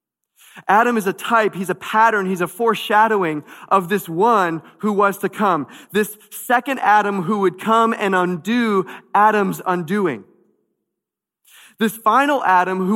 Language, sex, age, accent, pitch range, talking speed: English, male, 30-49, American, 180-230 Hz, 145 wpm